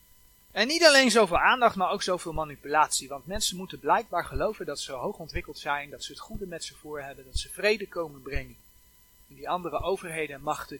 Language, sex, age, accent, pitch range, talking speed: Dutch, male, 30-49, Dutch, 135-185 Hz, 210 wpm